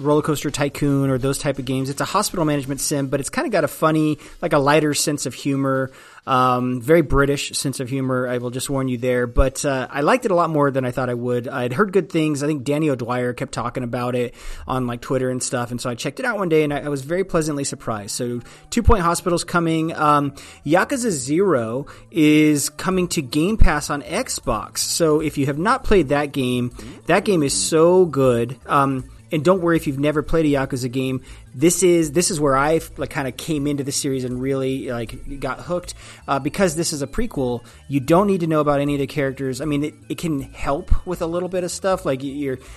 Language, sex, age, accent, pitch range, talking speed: English, male, 30-49, American, 130-155 Hz, 235 wpm